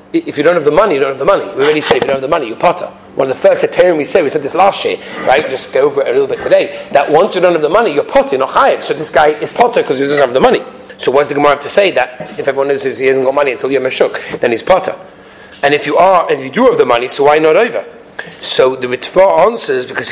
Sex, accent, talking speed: male, British, 320 wpm